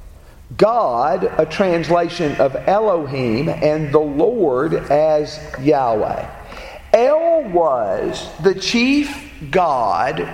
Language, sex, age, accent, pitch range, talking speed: English, male, 50-69, American, 160-225 Hz, 85 wpm